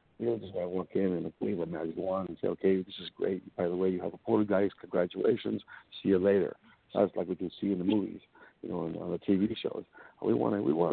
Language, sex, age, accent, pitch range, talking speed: English, male, 60-79, American, 90-105 Hz, 275 wpm